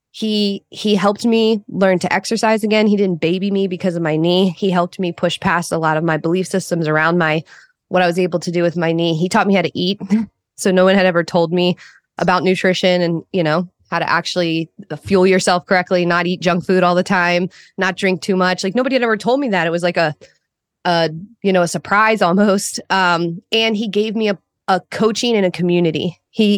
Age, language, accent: 20-39, English, American